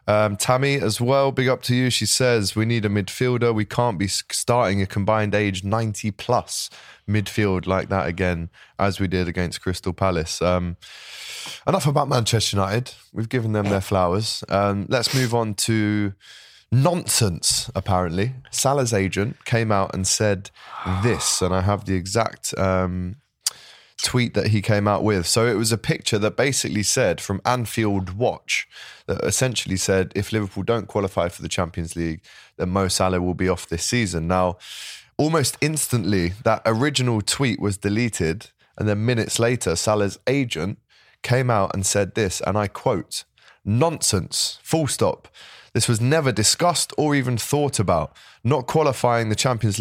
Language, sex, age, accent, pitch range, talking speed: English, male, 20-39, British, 95-120 Hz, 165 wpm